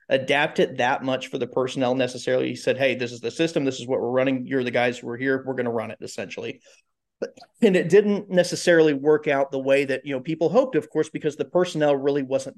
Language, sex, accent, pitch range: English, male, American, 125-155 Hz